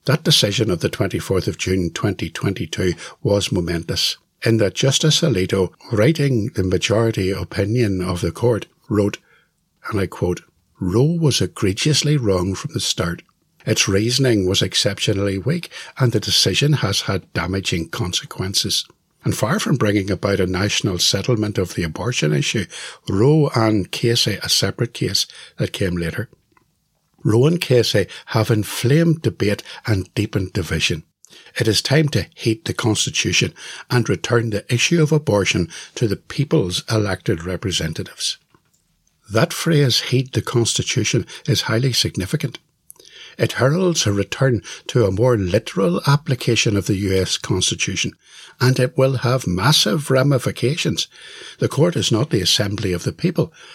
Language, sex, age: English, male, 60-79